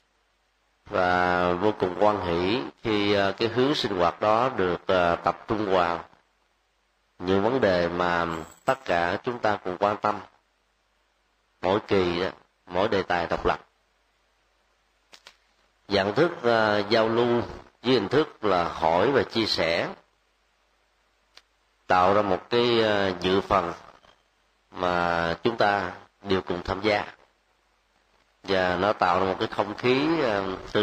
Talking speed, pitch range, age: 130 wpm, 90-110 Hz, 30-49